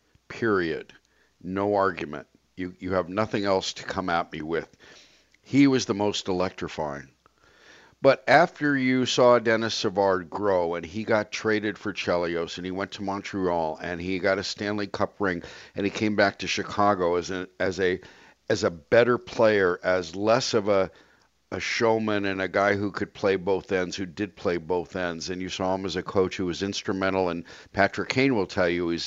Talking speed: 190 wpm